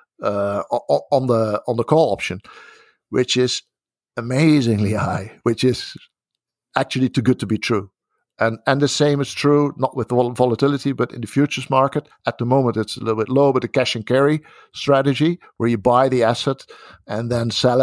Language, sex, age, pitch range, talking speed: English, male, 50-69, 115-145 Hz, 185 wpm